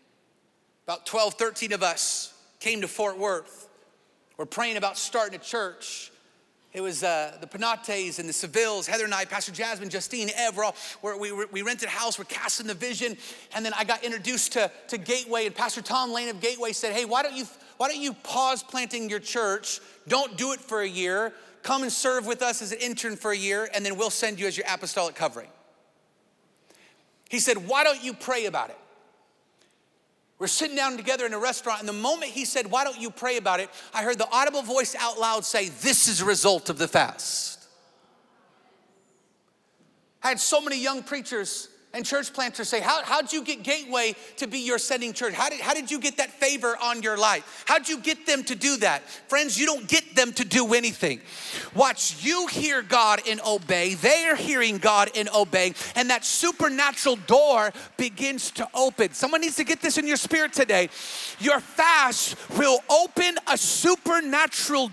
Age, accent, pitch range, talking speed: 30-49, American, 215-280 Hz, 200 wpm